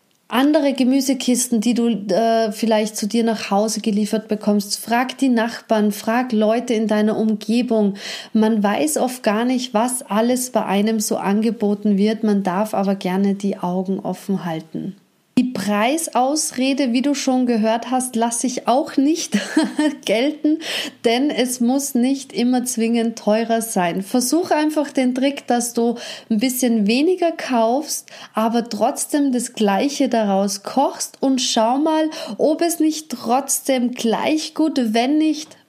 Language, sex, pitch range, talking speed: German, female, 215-265 Hz, 145 wpm